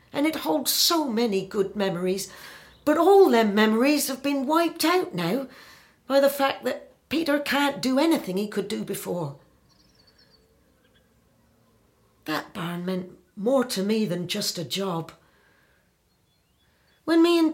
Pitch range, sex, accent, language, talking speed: 170-245 Hz, female, British, English, 140 wpm